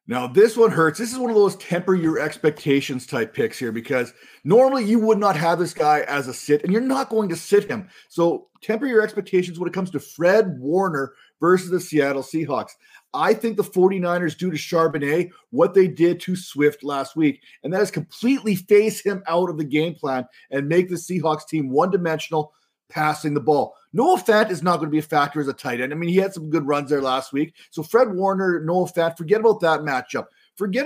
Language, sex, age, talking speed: English, male, 30-49, 225 wpm